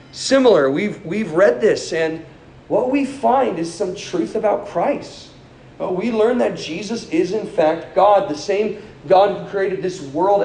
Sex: male